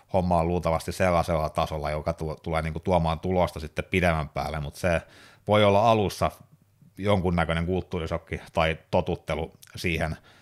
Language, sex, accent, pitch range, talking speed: Finnish, male, native, 80-100 Hz, 125 wpm